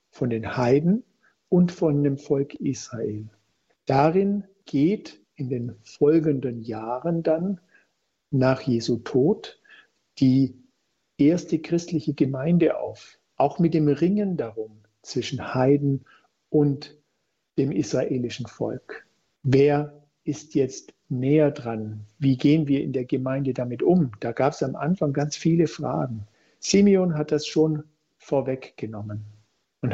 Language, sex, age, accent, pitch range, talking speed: German, male, 50-69, German, 130-155 Hz, 120 wpm